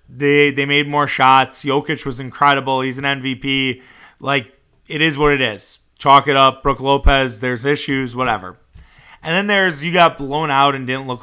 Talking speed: 185 wpm